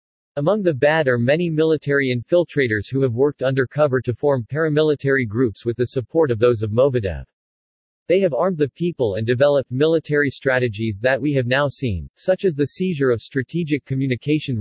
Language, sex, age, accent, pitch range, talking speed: English, male, 40-59, American, 120-150 Hz, 175 wpm